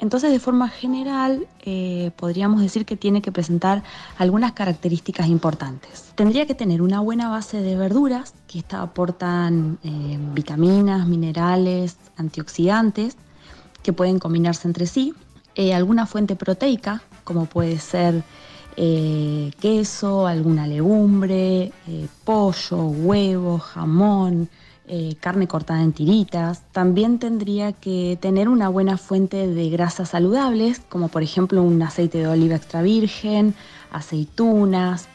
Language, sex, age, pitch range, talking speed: Spanish, female, 20-39, 170-215 Hz, 125 wpm